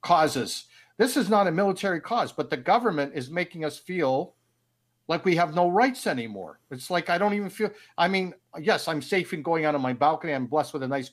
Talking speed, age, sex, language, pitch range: 225 wpm, 50-69, male, English, 135-175 Hz